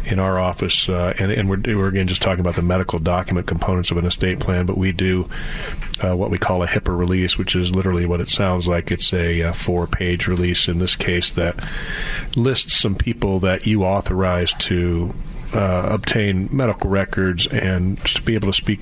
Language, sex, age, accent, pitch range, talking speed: English, male, 40-59, American, 90-100 Hz, 200 wpm